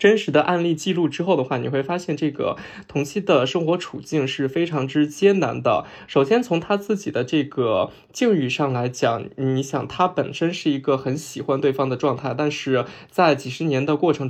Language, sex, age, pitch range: Chinese, male, 20-39, 135-175 Hz